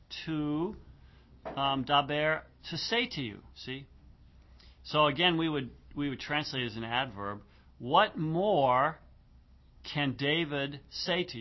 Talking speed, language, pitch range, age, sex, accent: 130 wpm, English, 100-150 Hz, 50-69, male, American